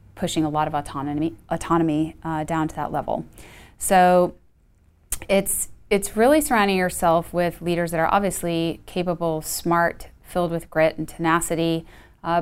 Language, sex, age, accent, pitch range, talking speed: English, female, 30-49, American, 150-170 Hz, 145 wpm